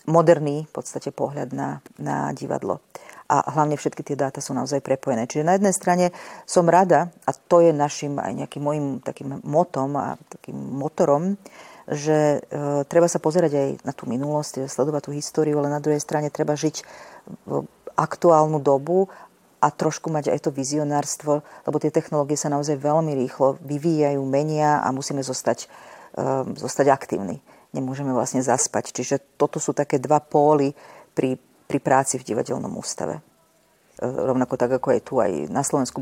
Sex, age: female, 40-59